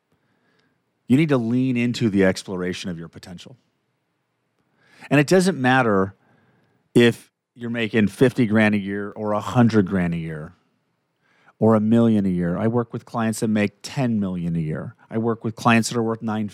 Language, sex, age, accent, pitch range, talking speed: English, male, 40-59, American, 95-120 Hz, 180 wpm